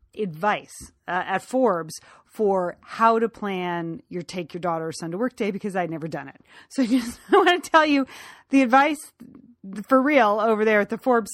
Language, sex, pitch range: English, female, 170-220 Hz